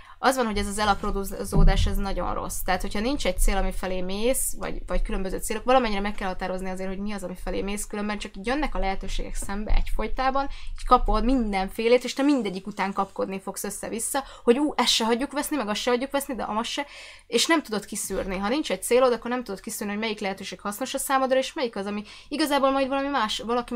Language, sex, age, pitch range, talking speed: Hungarian, female, 20-39, 190-245 Hz, 225 wpm